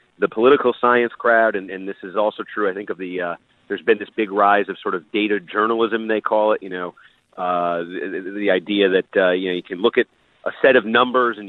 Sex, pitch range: male, 95-120 Hz